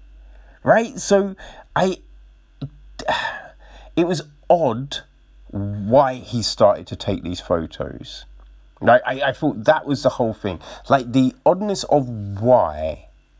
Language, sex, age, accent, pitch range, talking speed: English, male, 30-49, British, 100-150 Hz, 120 wpm